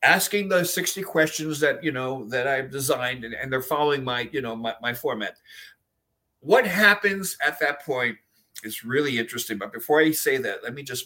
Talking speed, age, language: 195 wpm, 60-79, English